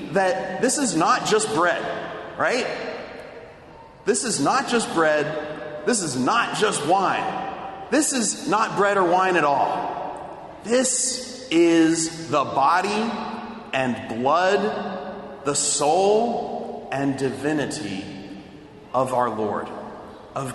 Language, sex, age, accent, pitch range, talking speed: English, male, 30-49, American, 150-220 Hz, 115 wpm